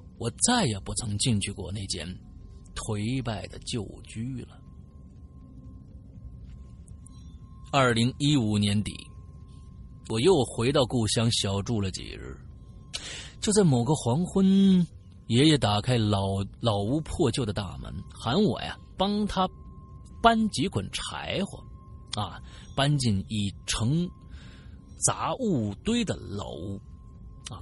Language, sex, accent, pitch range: Chinese, male, native, 100-165 Hz